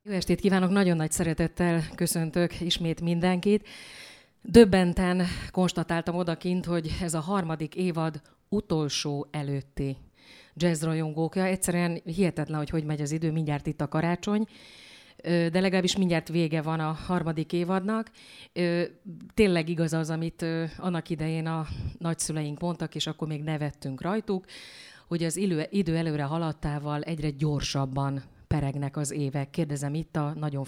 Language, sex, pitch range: Hungarian, female, 150-180 Hz